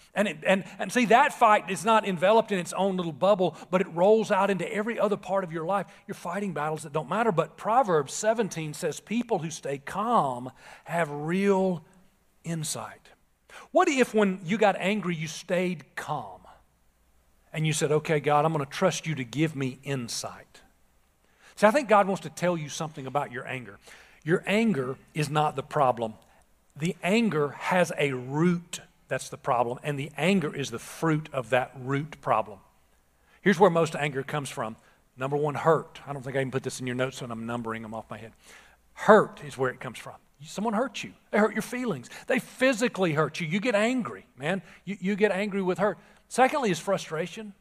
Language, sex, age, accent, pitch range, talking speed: English, male, 40-59, American, 150-205 Hz, 200 wpm